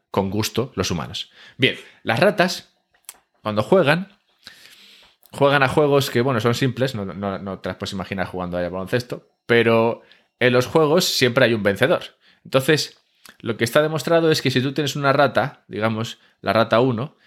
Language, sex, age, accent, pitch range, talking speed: Spanish, male, 20-39, Spanish, 105-140 Hz, 175 wpm